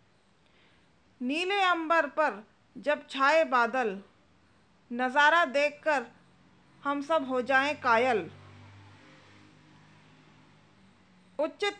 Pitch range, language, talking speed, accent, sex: 275-315 Hz, Hindi, 70 wpm, native, female